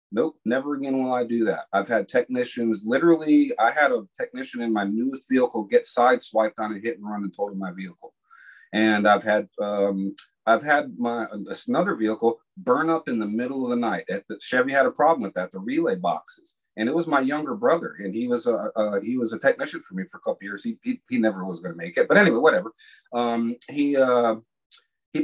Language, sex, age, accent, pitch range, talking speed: English, male, 40-59, American, 115-165 Hz, 230 wpm